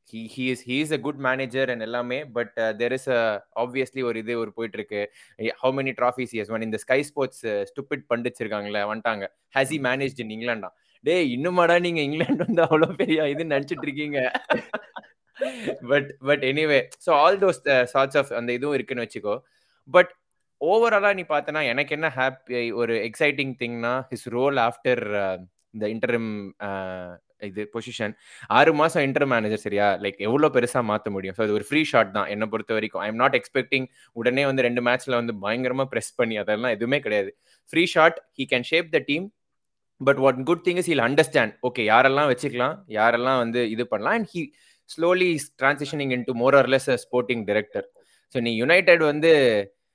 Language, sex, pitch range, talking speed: Tamil, male, 115-145 Hz, 100 wpm